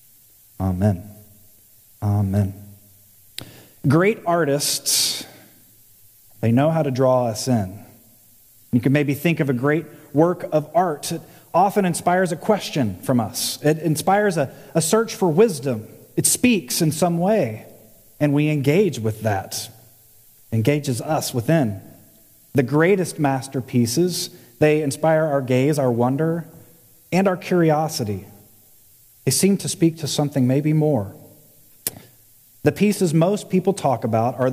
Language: English